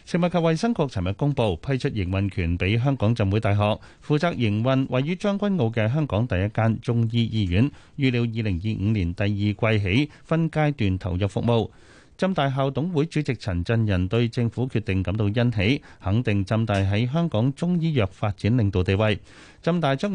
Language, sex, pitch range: Chinese, male, 100-140 Hz